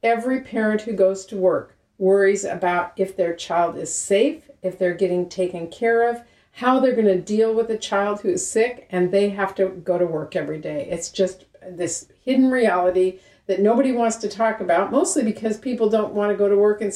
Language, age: English, 50-69